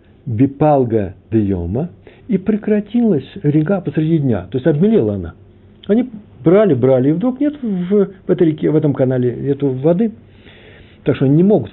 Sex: male